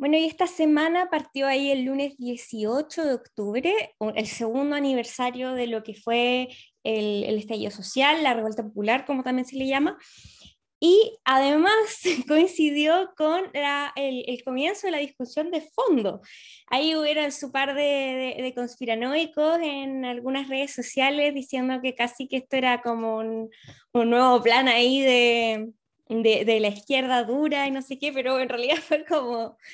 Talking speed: 165 wpm